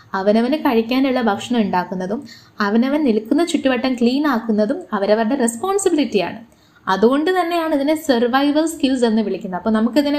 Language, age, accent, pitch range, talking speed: Malayalam, 20-39, native, 215-285 Hz, 120 wpm